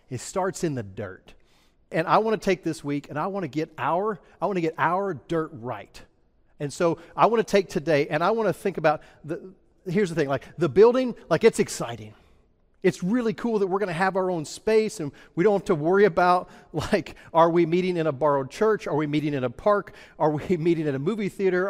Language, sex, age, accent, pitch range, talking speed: English, male, 40-59, American, 145-195 Hz, 220 wpm